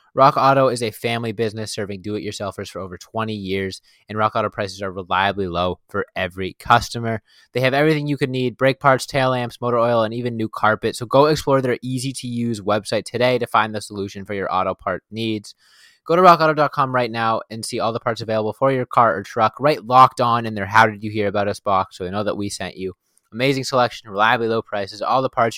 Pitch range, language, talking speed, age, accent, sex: 105-125 Hz, English, 215 wpm, 20-39, American, male